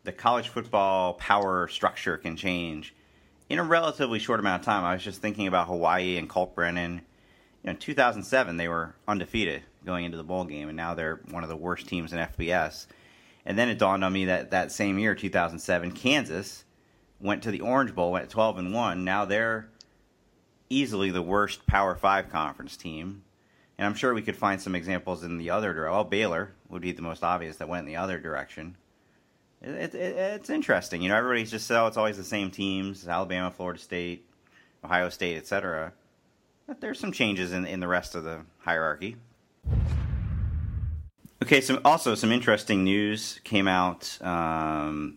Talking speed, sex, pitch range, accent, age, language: 185 wpm, male, 85-105 Hz, American, 40-59, English